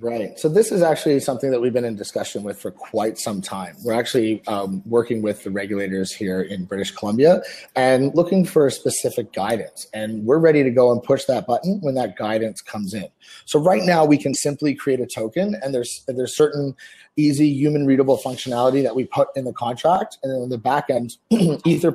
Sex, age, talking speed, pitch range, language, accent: male, 30-49, 210 wpm, 120-155 Hz, English, American